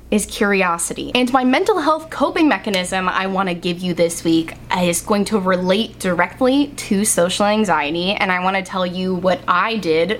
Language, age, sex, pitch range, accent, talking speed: English, 10-29, female, 180-250 Hz, American, 175 wpm